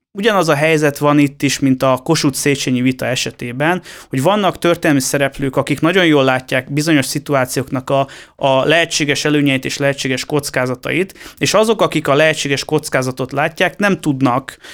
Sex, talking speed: male, 150 wpm